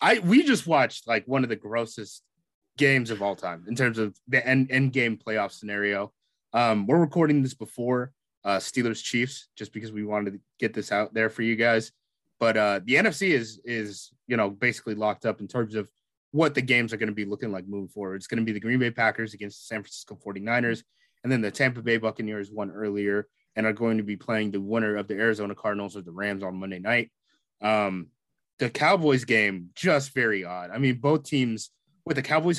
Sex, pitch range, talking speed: male, 110-140 Hz, 215 wpm